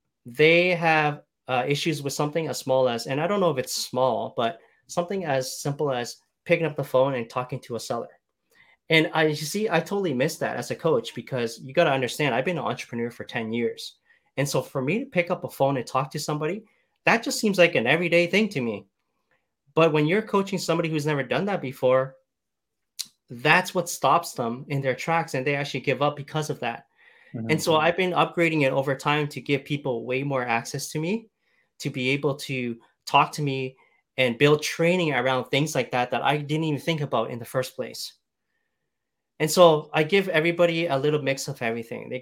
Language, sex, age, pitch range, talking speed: English, male, 30-49, 125-165 Hz, 215 wpm